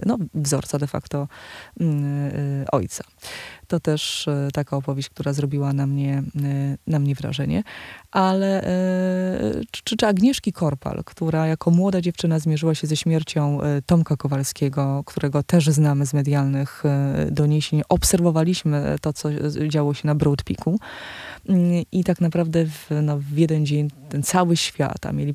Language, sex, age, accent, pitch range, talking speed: Polish, female, 20-39, native, 140-170 Hz, 145 wpm